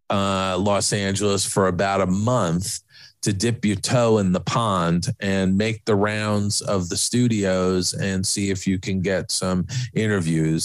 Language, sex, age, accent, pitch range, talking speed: English, male, 40-59, American, 95-110 Hz, 165 wpm